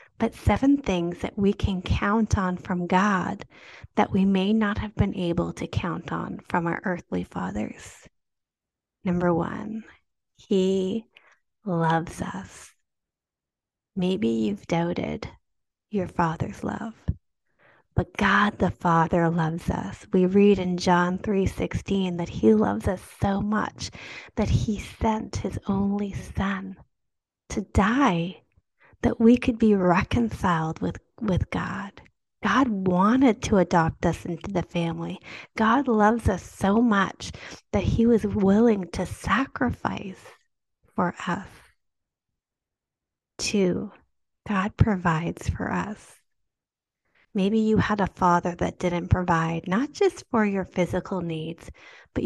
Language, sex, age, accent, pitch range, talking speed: English, female, 30-49, American, 170-210 Hz, 125 wpm